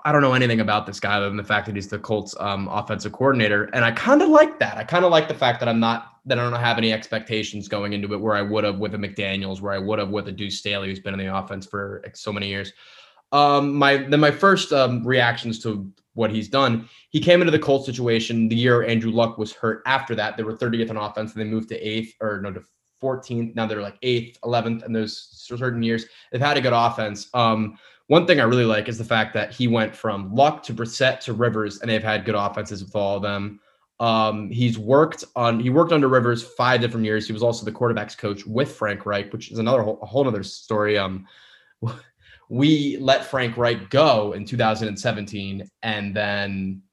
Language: English